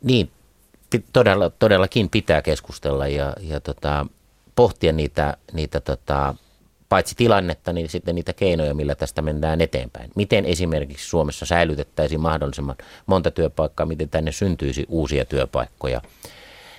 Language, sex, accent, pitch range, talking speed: Finnish, male, native, 70-90 Hz, 120 wpm